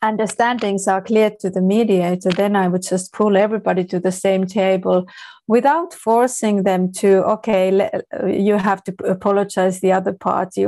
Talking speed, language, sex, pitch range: 155 wpm, English, female, 190-225 Hz